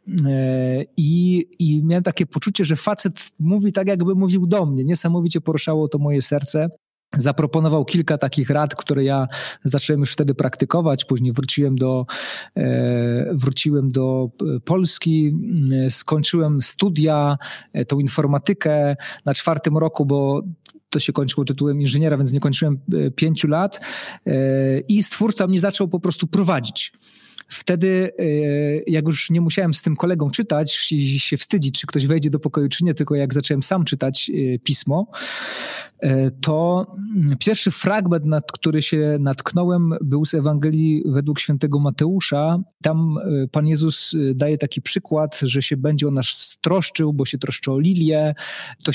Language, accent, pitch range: Polish, native, 140-170 Hz